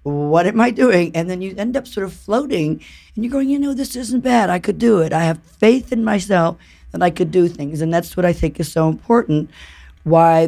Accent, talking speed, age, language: American, 245 wpm, 50-69, English